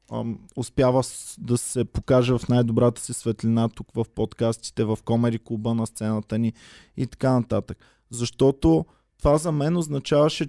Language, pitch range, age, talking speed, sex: Bulgarian, 115-145 Hz, 20-39, 145 wpm, male